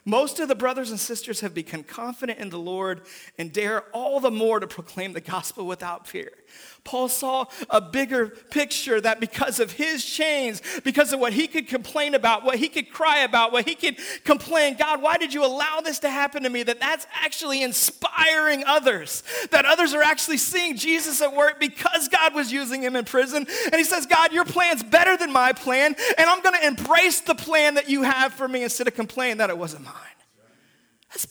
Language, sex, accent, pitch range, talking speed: English, male, American, 225-315 Hz, 210 wpm